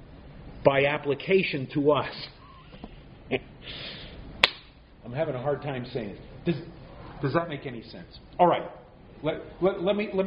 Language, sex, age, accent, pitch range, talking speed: Italian, male, 40-59, American, 130-180 Hz, 130 wpm